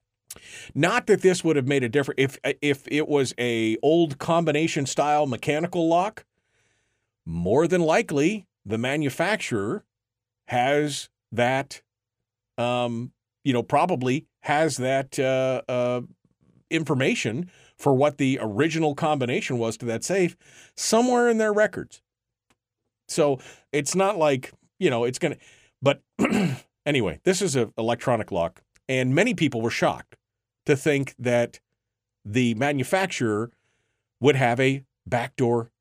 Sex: male